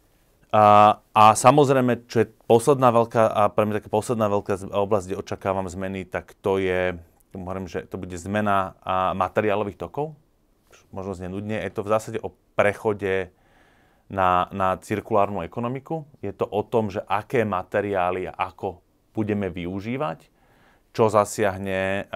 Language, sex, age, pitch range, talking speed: Slovak, male, 30-49, 95-115 Hz, 125 wpm